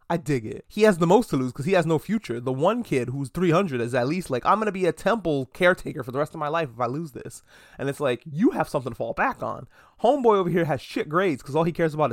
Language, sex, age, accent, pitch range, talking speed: English, male, 20-39, American, 135-185 Hz, 300 wpm